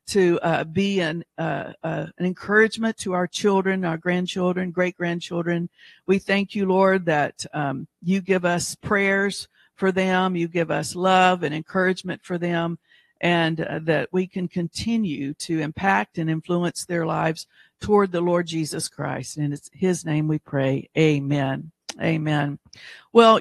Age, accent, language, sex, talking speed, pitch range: 50-69, American, English, female, 150 wpm, 155-180 Hz